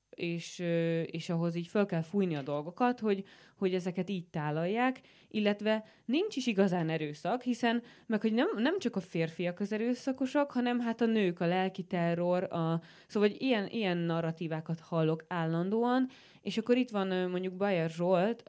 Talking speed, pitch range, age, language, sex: 165 wpm, 165-195 Hz, 20-39, Hungarian, female